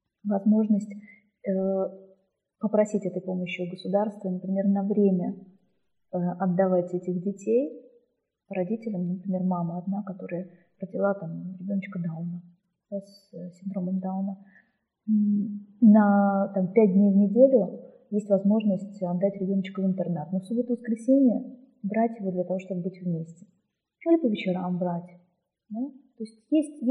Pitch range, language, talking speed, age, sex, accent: 180-210 Hz, Russian, 125 wpm, 20-39, female, native